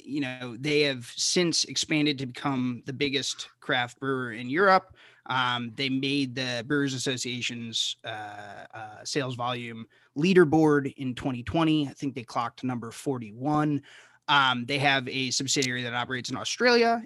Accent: American